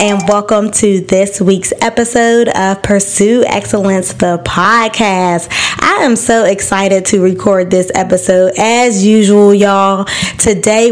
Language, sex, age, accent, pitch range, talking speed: English, female, 20-39, American, 190-230 Hz, 125 wpm